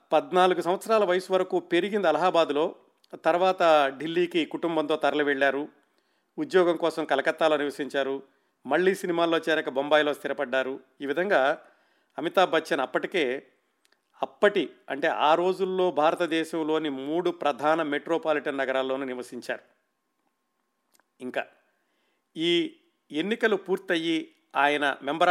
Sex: male